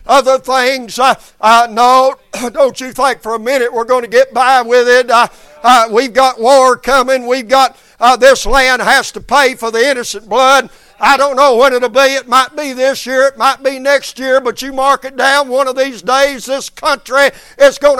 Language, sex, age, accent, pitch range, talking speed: English, male, 60-79, American, 225-265 Hz, 215 wpm